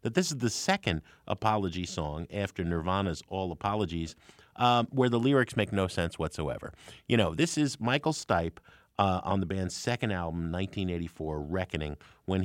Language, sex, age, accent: English, male, 50-69, American